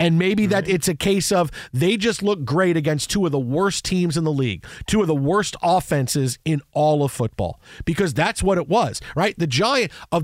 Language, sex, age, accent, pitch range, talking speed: English, male, 40-59, American, 145-180 Hz, 225 wpm